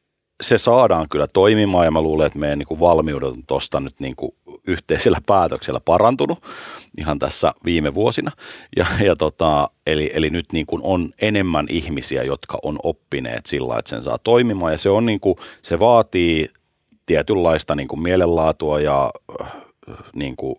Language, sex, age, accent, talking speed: Finnish, male, 30-49, native, 145 wpm